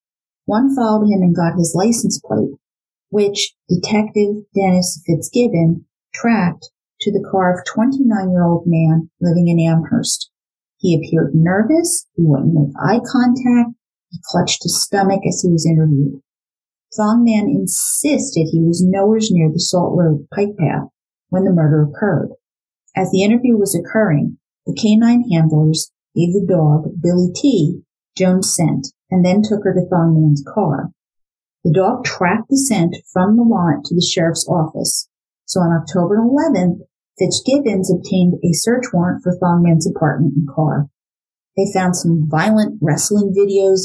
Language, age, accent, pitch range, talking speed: English, 40-59, American, 165-215 Hz, 150 wpm